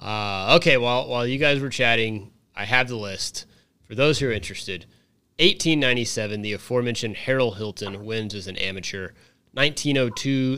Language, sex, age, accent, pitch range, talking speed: English, male, 30-49, American, 105-135 Hz, 155 wpm